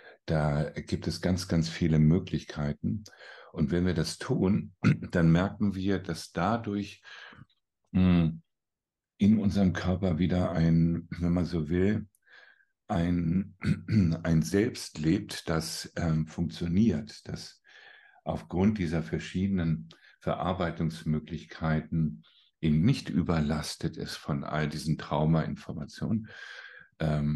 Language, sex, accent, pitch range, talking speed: German, male, German, 80-90 Hz, 100 wpm